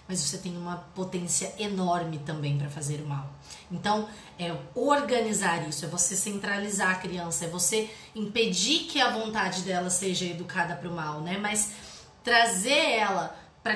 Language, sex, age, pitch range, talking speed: Portuguese, female, 20-39, 185-245 Hz, 155 wpm